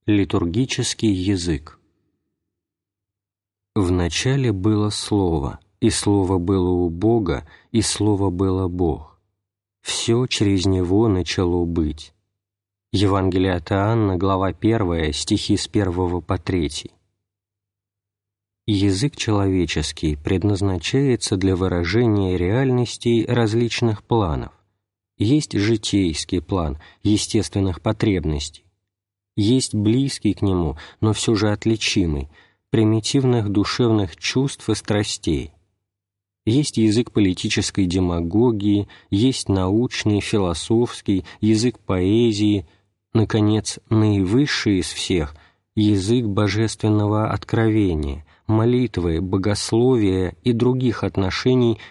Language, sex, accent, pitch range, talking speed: Russian, male, native, 95-110 Hz, 90 wpm